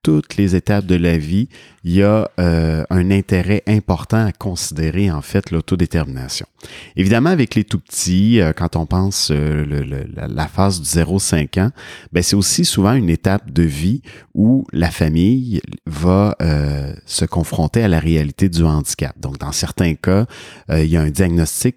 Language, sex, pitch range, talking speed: French, male, 85-105 Hz, 175 wpm